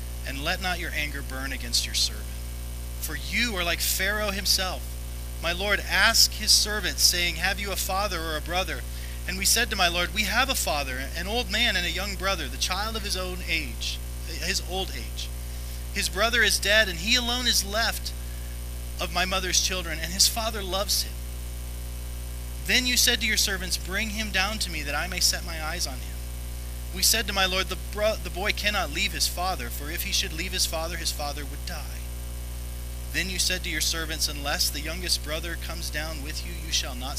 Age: 30-49